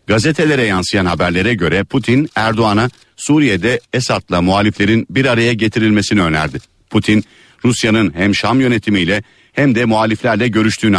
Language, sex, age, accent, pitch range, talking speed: Turkish, male, 50-69, native, 95-115 Hz, 120 wpm